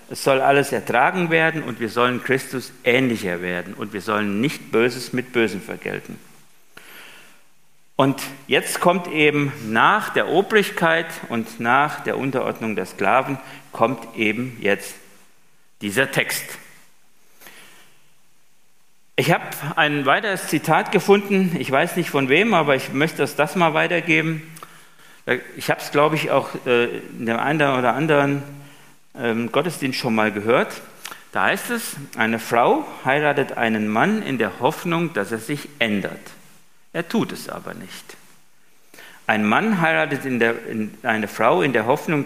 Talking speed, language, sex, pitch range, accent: 145 wpm, German, male, 120-165 Hz, German